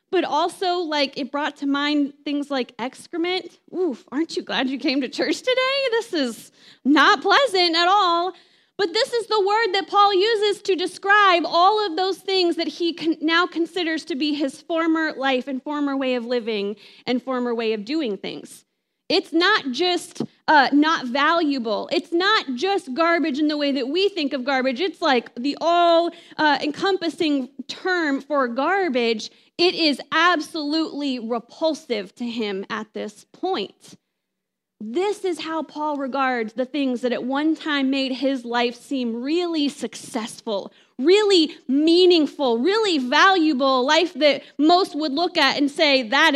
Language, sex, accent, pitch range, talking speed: English, female, American, 255-345 Hz, 160 wpm